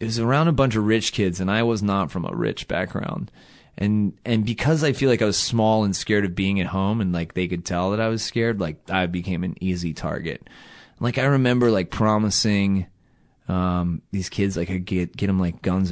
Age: 30-49